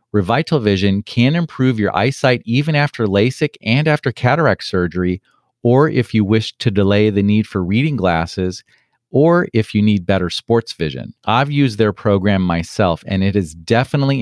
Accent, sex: American, male